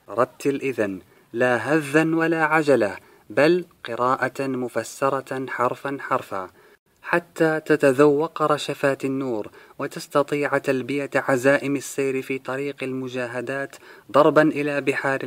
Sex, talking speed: male, 100 wpm